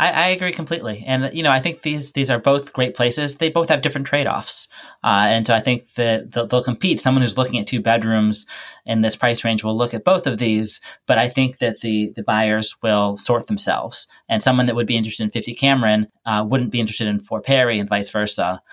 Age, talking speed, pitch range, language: 20-39, 235 wpm, 110-135 Hz, English